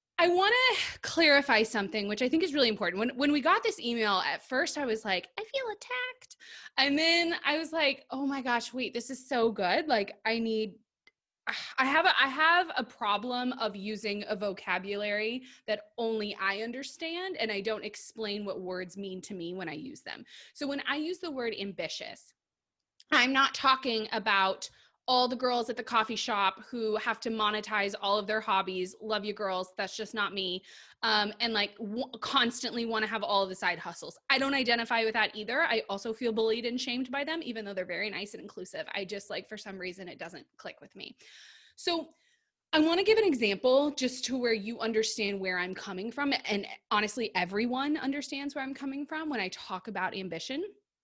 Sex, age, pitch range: female, 20-39, 210-285 Hz